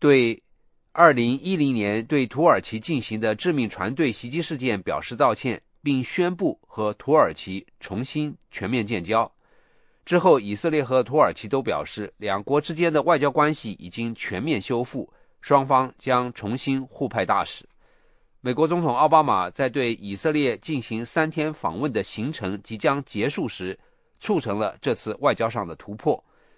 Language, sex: English, male